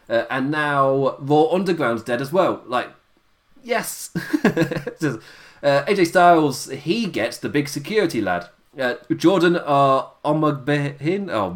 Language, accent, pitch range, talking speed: English, British, 110-165 Hz, 120 wpm